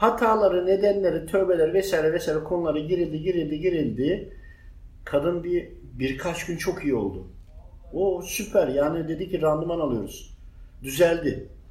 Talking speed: 125 wpm